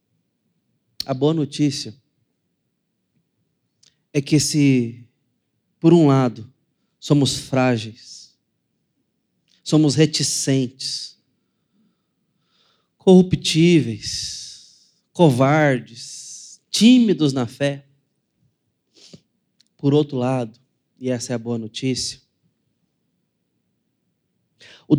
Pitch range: 120-145 Hz